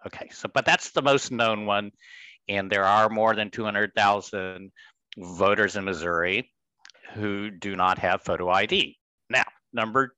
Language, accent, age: English, American, 60-79